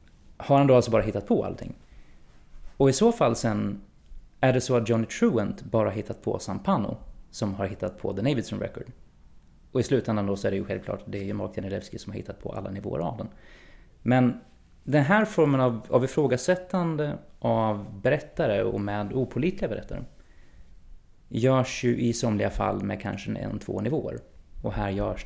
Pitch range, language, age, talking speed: 95-125 Hz, Swedish, 30-49, 185 wpm